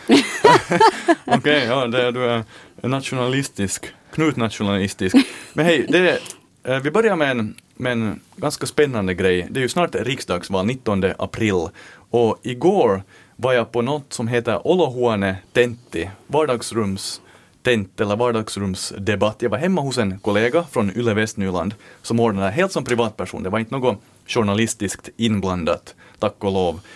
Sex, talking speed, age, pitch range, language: male, 135 wpm, 30-49, 95-125 Hz, English